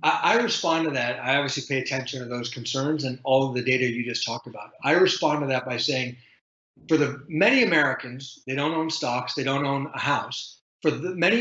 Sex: male